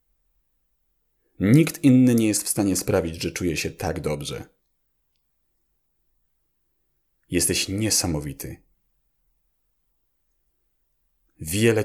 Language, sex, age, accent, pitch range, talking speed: Polish, male, 40-59, native, 75-105 Hz, 75 wpm